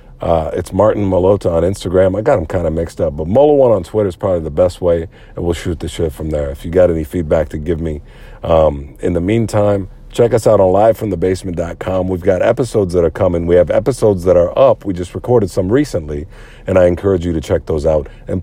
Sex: male